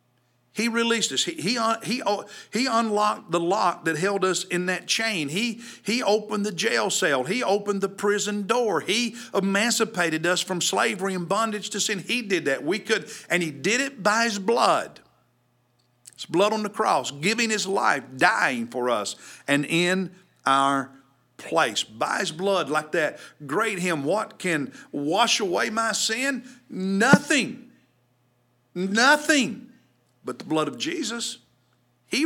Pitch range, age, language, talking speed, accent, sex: 125-210 Hz, 50-69, English, 155 wpm, American, male